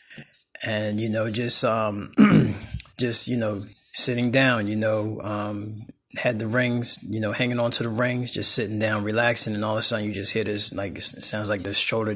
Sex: male